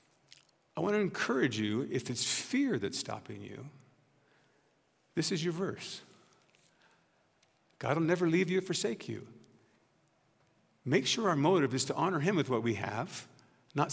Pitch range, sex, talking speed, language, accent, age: 130-185 Hz, male, 155 wpm, English, American, 50-69